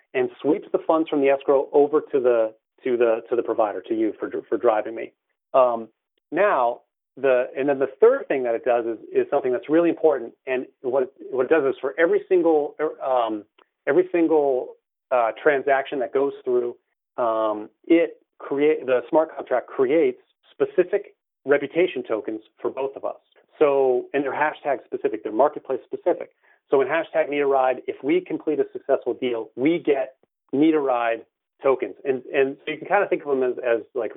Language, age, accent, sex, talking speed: English, 40-59, American, male, 190 wpm